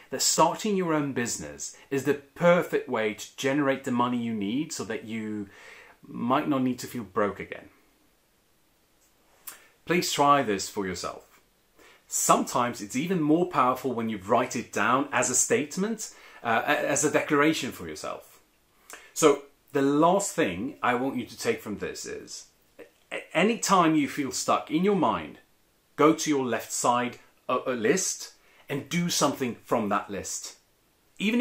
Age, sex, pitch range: 30-49, male, 110-160 Hz